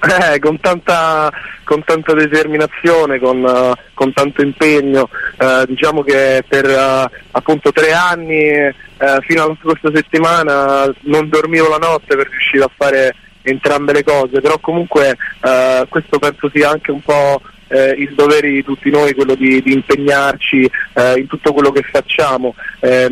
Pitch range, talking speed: 135-155 Hz, 160 wpm